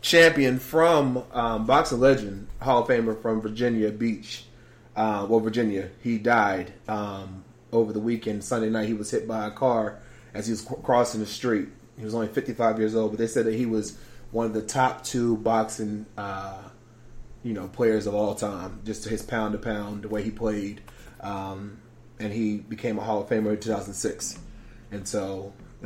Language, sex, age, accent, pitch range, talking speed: English, male, 30-49, American, 105-120 Hz, 185 wpm